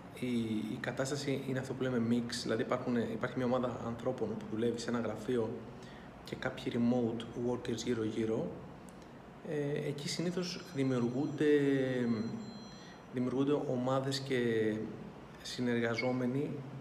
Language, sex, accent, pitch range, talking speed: Greek, male, native, 120-140 Hz, 105 wpm